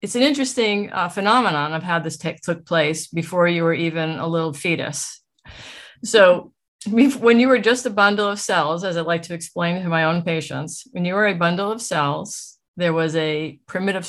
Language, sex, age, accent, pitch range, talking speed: English, female, 50-69, American, 155-180 Hz, 200 wpm